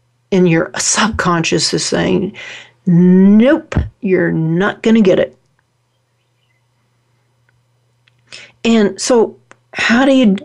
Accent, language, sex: American, English, female